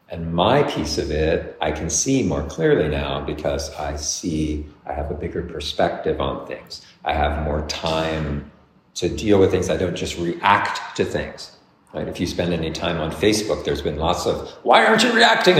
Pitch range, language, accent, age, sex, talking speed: 85-105 Hz, English, American, 50-69, male, 190 wpm